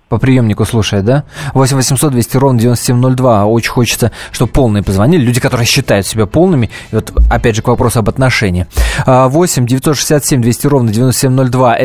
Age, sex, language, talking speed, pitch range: 20-39, male, Russian, 120 wpm, 110-140 Hz